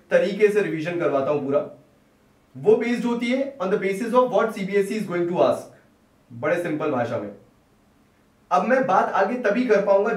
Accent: native